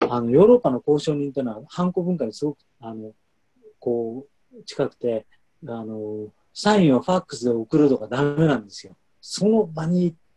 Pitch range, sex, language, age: 115-175 Hz, male, Japanese, 40-59